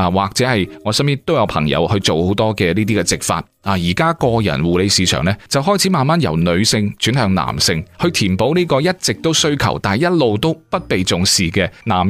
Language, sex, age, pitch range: Chinese, male, 30-49, 95-145 Hz